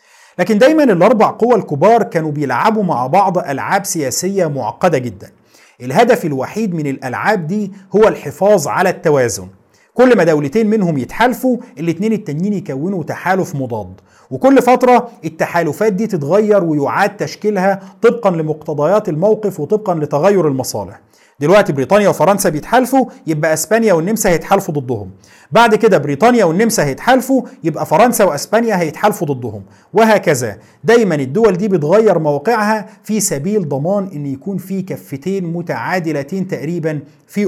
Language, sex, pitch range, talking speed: Arabic, male, 145-210 Hz, 130 wpm